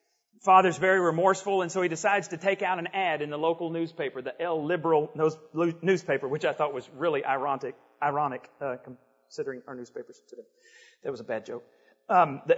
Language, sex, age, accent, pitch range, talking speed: English, male, 40-59, American, 135-210 Hz, 185 wpm